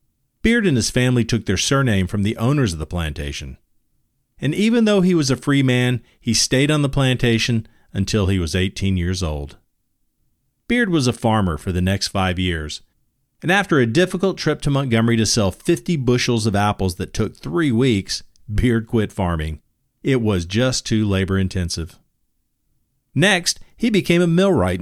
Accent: American